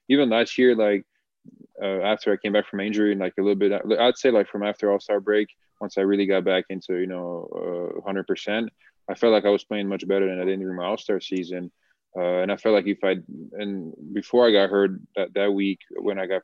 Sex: male